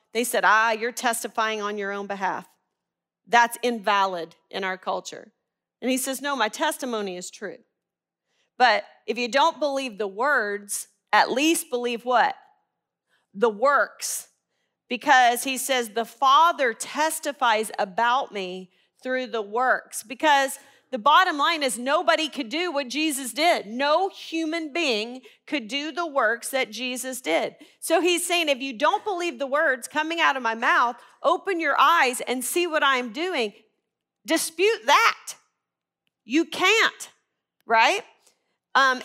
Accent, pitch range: American, 235-315 Hz